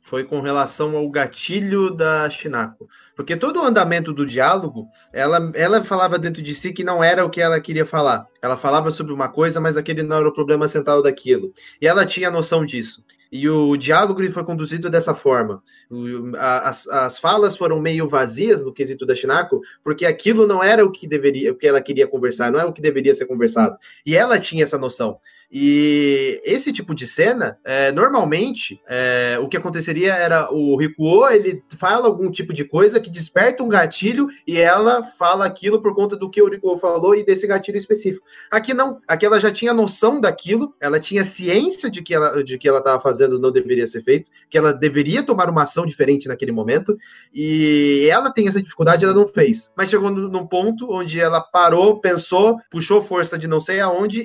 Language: Portuguese